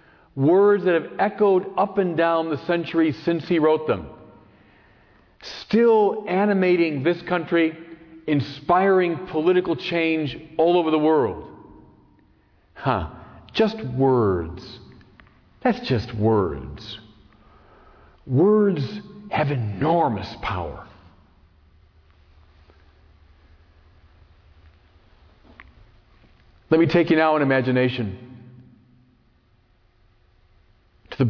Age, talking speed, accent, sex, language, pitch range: 50-69, 80 wpm, American, male, English, 105-155 Hz